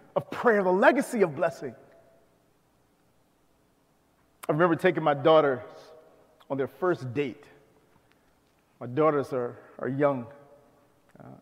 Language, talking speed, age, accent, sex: English, 120 wpm, 30-49, American, male